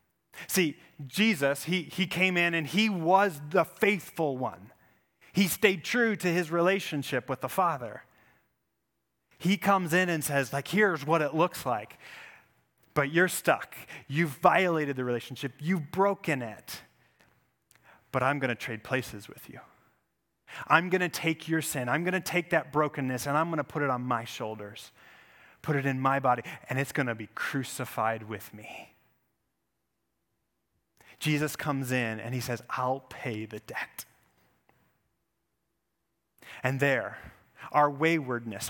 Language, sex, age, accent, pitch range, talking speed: English, male, 30-49, American, 130-170 Hz, 150 wpm